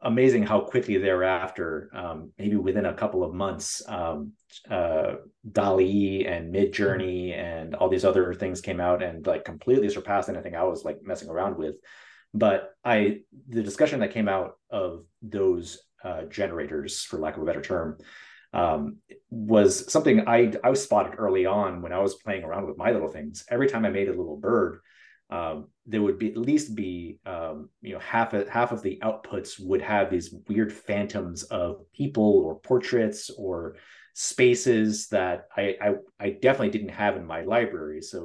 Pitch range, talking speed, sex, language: 90-115 Hz, 180 wpm, male, English